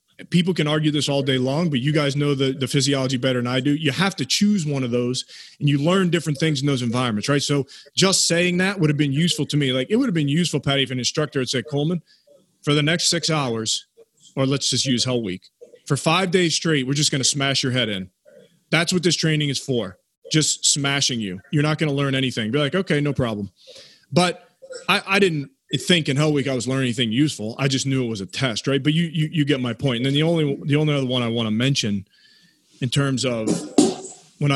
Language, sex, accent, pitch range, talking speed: English, male, American, 125-160 Hz, 250 wpm